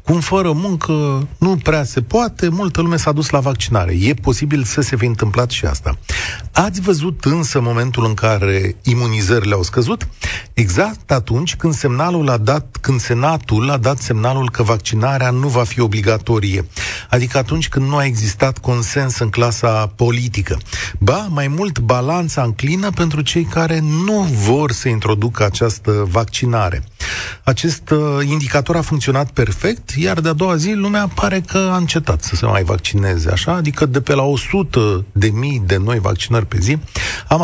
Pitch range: 105-155 Hz